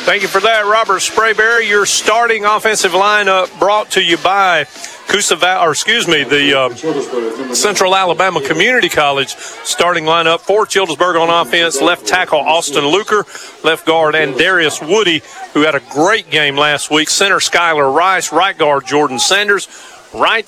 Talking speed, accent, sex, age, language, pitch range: 160 wpm, American, male, 40-59, English, 150-210 Hz